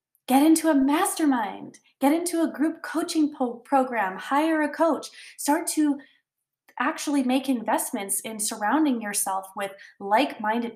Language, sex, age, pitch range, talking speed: English, female, 20-39, 200-260 Hz, 130 wpm